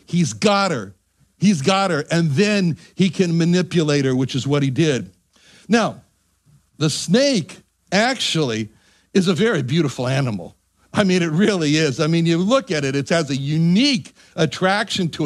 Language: English